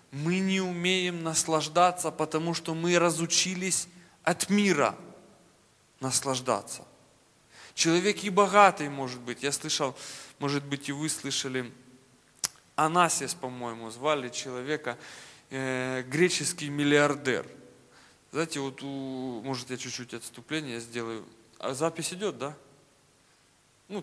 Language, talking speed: Russian, 105 wpm